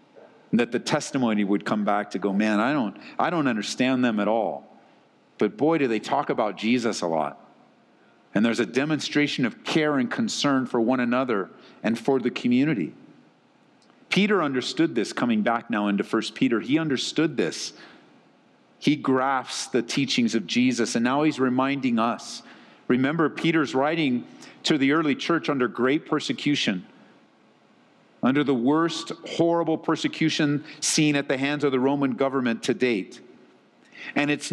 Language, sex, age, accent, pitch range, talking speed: English, male, 50-69, American, 135-225 Hz, 160 wpm